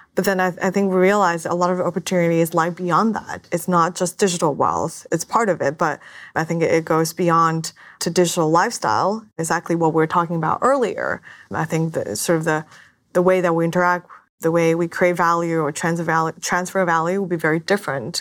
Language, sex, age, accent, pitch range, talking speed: English, female, 20-39, American, 160-185 Hz, 200 wpm